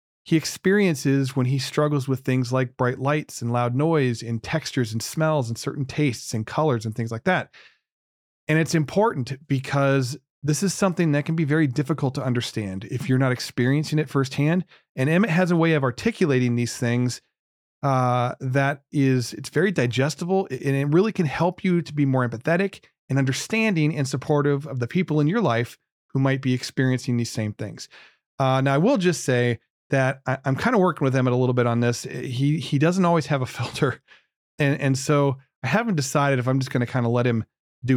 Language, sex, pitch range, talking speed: English, male, 125-155 Hz, 205 wpm